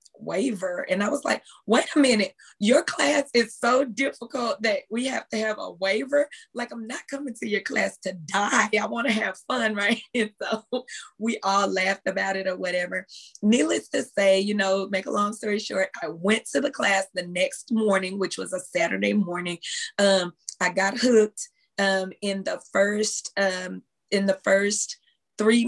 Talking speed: 185 wpm